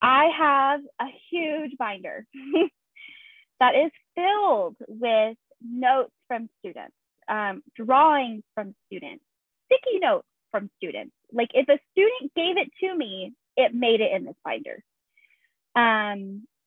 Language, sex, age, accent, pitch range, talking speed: English, female, 10-29, American, 205-285 Hz, 125 wpm